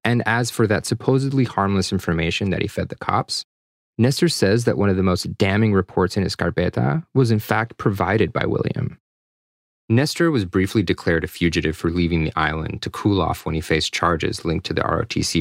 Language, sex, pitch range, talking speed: English, male, 90-120 Hz, 195 wpm